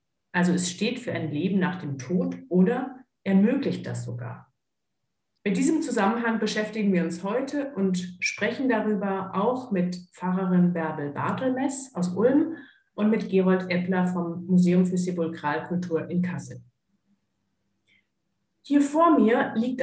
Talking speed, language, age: 135 wpm, German, 50-69